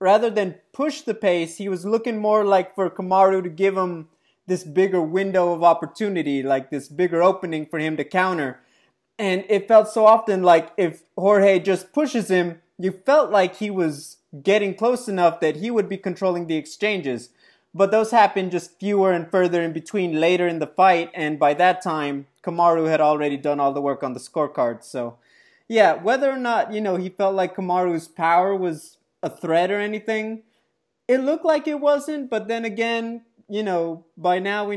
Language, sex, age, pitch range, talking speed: English, male, 20-39, 160-205 Hz, 190 wpm